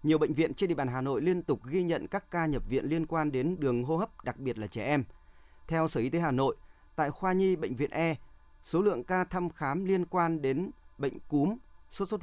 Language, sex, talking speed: Vietnamese, male, 250 wpm